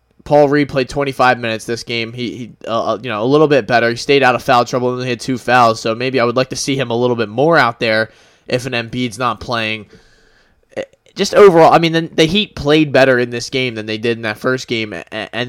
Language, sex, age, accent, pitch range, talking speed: English, male, 20-39, American, 115-140 Hz, 260 wpm